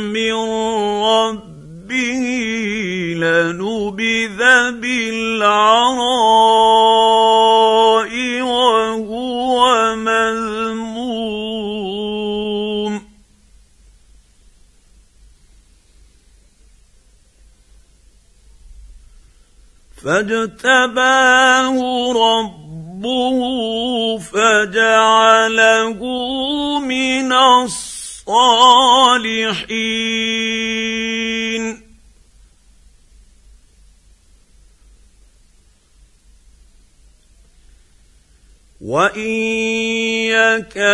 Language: English